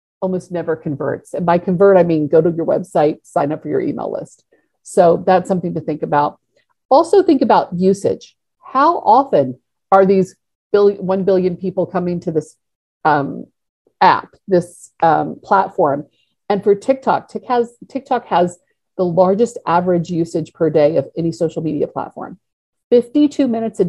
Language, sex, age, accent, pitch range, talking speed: English, female, 50-69, American, 170-220 Hz, 160 wpm